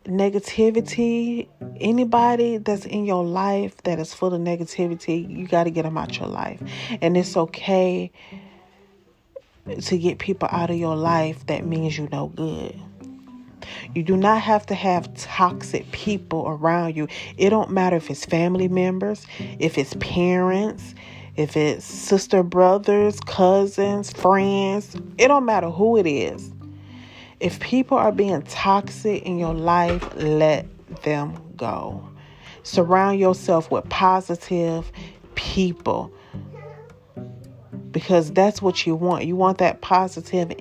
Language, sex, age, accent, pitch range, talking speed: English, female, 30-49, American, 160-195 Hz, 135 wpm